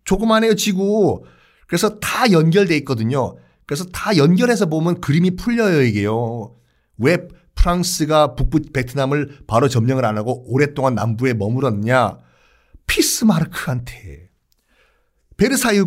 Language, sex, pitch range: Korean, male, 125-185 Hz